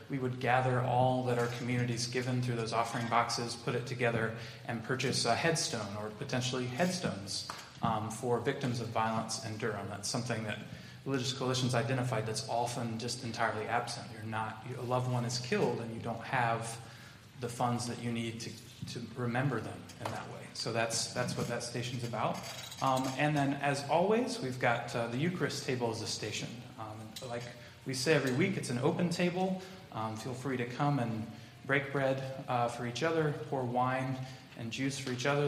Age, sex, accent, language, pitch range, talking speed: 30-49, male, American, English, 115-135 Hz, 190 wpm